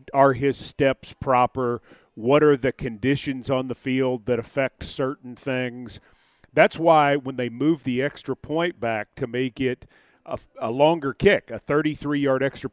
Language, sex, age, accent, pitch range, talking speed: English, male, 40-59, American, 130-155 Hz, 165 wpm